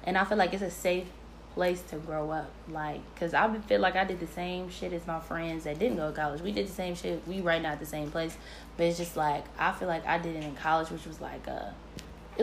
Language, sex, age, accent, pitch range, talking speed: English, female, 10-29, American, 170-205 Hz, 280 wpm